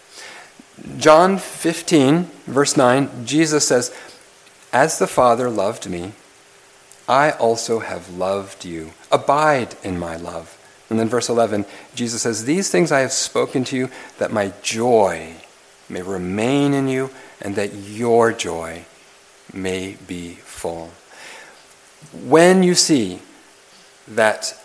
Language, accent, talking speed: English, American, 125 wpm